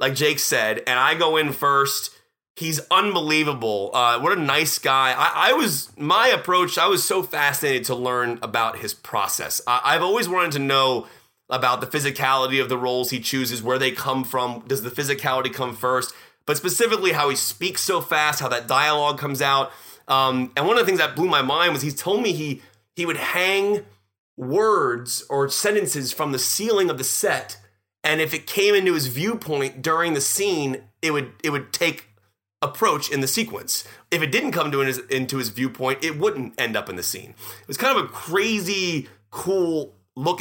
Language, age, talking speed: English, 30-49, 195 wpm